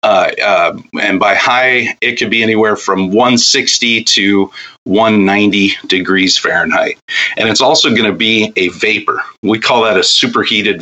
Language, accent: English, American